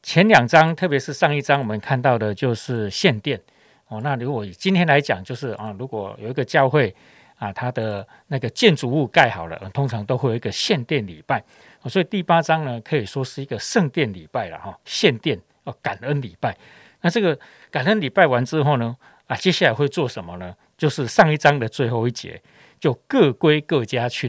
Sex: male